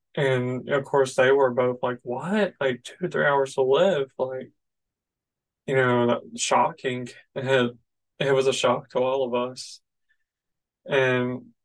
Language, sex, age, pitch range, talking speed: English, male, 20-39, 125-135 Hz, 150 wpm